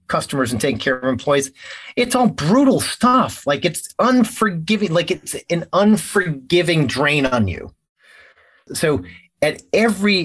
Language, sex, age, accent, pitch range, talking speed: English, male, 30-49, American, 120-185 Hz, 135 wpm